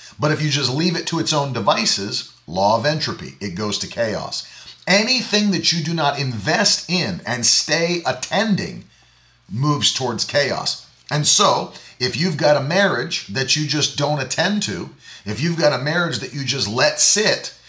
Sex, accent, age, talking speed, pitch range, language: male, American, 40-59, 180 wpm, 120-165 Hz, English